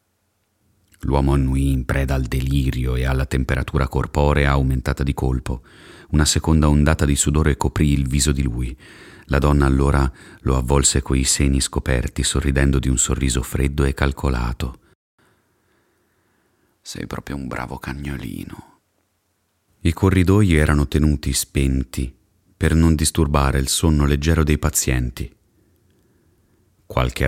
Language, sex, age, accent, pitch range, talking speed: Italian, male, 30-49, native, 65-85 Hz, 125 wpm